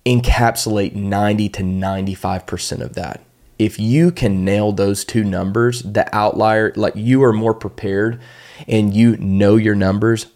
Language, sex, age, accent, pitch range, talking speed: English, male, 30-49, American, 100-115 Hz, 145 wpm